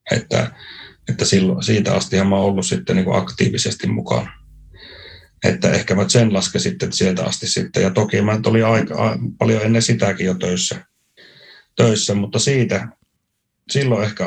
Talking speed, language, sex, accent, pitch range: 150 wpm, Finnish, male, native, 100-125 Hz